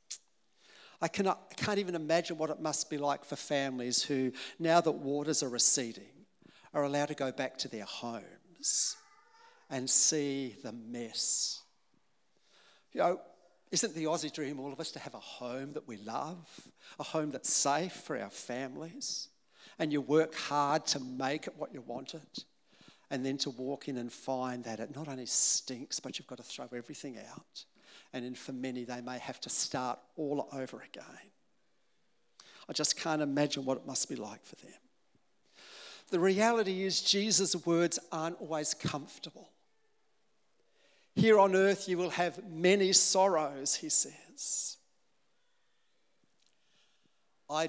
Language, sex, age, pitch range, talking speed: English, male, 60-79, 135-180 Hz, 155 wpm